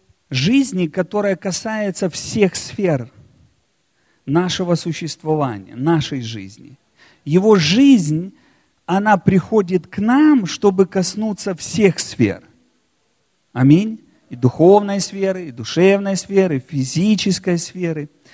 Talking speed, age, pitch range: 95 wpm, 40-59, 145-210 Hz